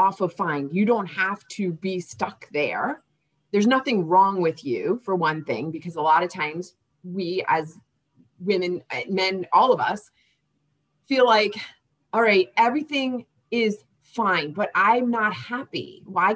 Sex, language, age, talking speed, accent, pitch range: female, English, 30-49, 155 wpm, American, 160-215 Hz